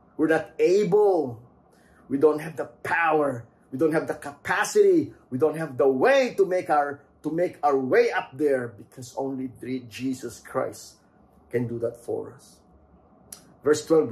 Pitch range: 125-155 Hz